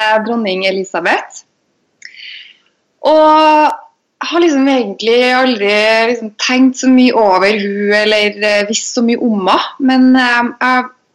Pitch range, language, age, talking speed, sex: 205-270 Hz, English, 20-39, 115 wpm, female